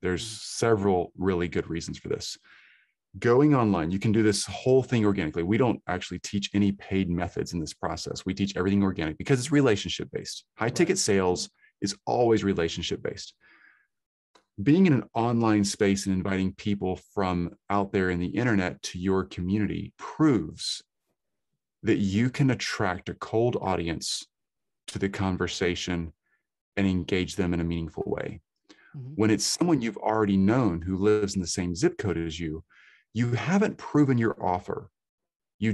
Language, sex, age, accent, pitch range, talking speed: English, male, 30-49, American, 90-110 Hz, 160 wpm